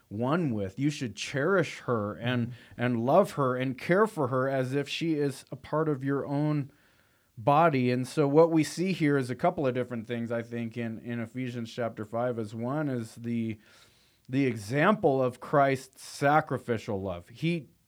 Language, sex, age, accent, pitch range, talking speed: English, male, 30-49, American, 120-150 Hz, 180 wpm